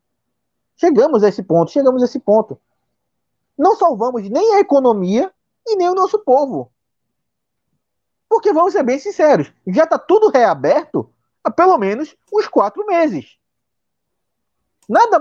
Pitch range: 195-310 Hz